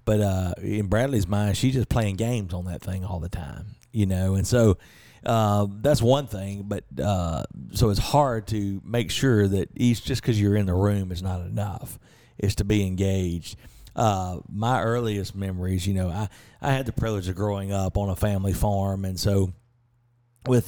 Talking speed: 195 wpm